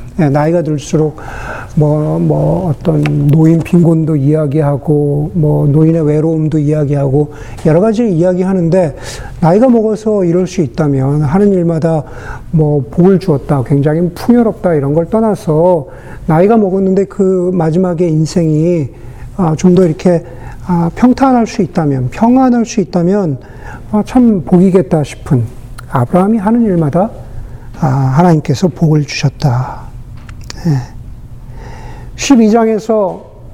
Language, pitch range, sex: Korean, 135-190 Hz, male